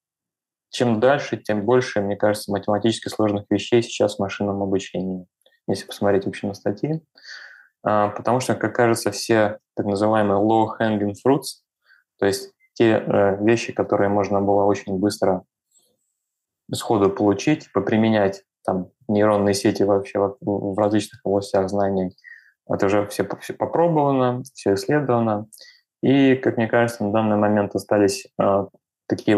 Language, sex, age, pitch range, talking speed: Russian, male, 20-39, 100-115 Hz, 130 wpm